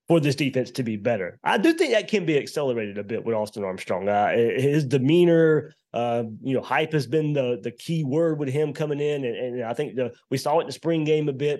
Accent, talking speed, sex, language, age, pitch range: American, 255 wpm, male, English, 30-49, 125-155 Hz